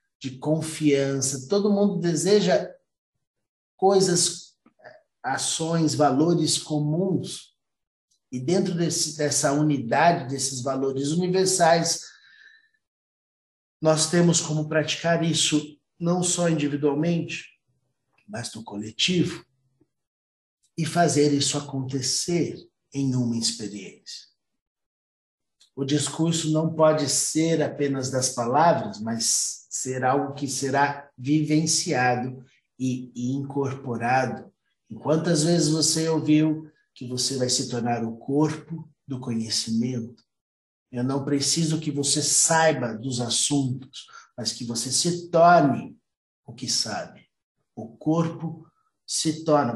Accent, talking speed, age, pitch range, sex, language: Brazilian, 105 wpm, 50-69, 130-165 Hz, male, Portuguese